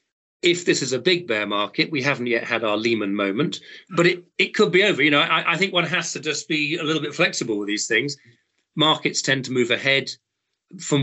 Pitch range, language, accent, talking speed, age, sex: 115-150 Hz, English, British, 235 wpm, 40-59, male